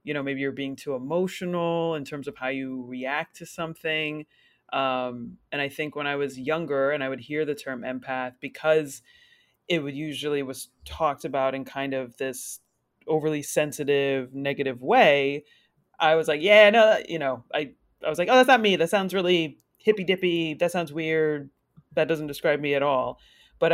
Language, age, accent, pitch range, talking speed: English, 30-49, American, 140-175 Hz, 190 wpm